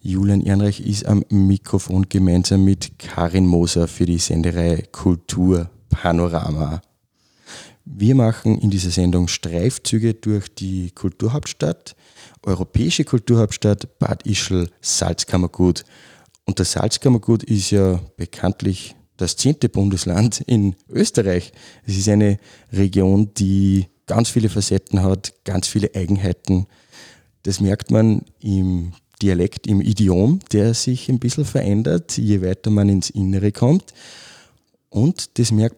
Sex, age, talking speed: male, 20-39, 120 wpm